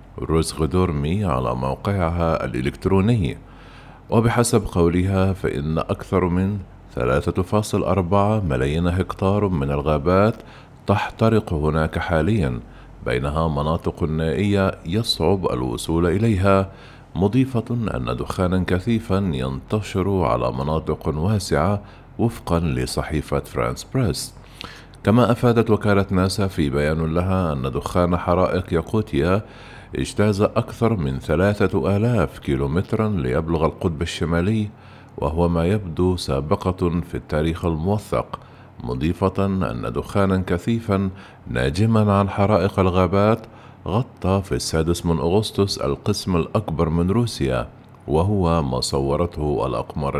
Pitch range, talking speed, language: 80-105 Hz, 100 wpm, Arabic